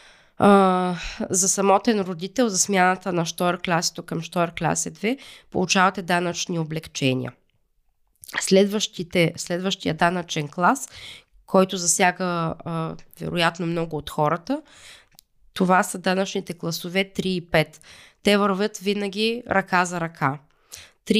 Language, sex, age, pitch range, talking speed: Bulgarian, female, 20-39, 170-200 Hz, 110 wpm